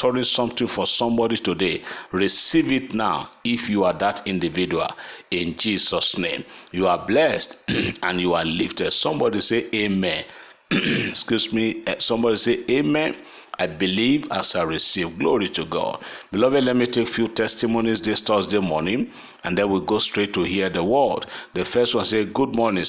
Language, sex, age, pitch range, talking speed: English, male, 50-69, 95-120 Hz, 165 wpm